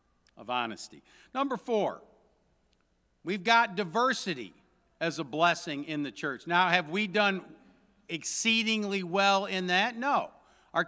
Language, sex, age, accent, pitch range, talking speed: English, male, 50-69, American, 170-220 Hz, 125 wpm